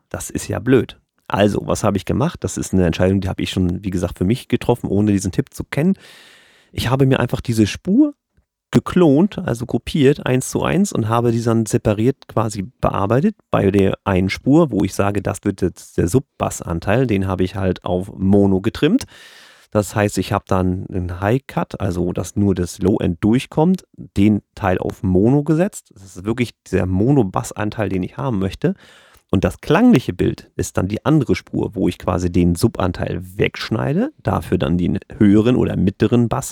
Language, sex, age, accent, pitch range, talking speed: German, male, 40-59, German, 95-120 Hz, 185 wpm